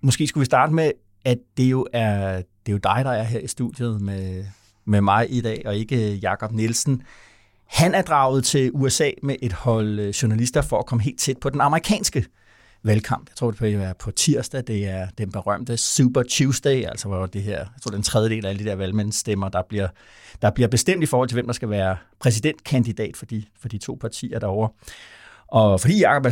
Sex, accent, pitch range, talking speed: male, native, 105-130 Hz, 220 wpm